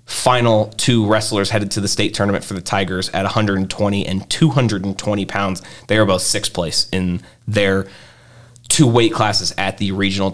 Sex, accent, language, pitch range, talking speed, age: male, American, English, 100-120 Hz, 170 wpm, 30-49